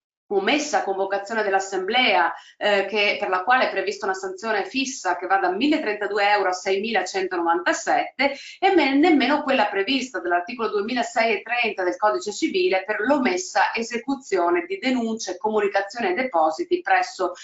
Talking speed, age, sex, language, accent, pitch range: 135 wpm, 30-49, female, Italian, native, 195-295 Hz